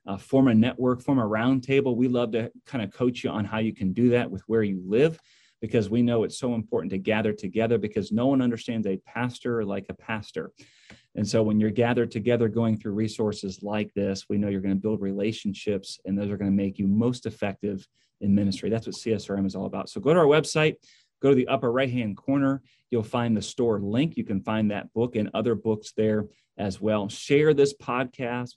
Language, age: English, 30-49